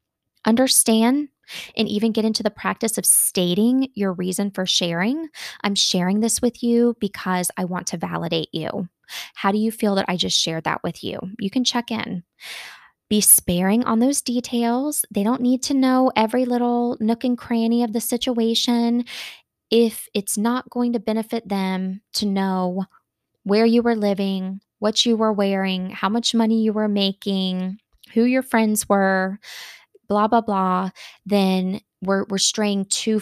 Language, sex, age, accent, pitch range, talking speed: English, female, 20-39, American, 190-235 Hz, 165 wpm